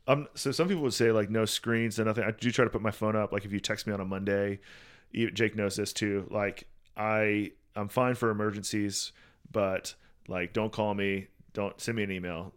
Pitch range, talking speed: 100-120 Hz, 225 wpm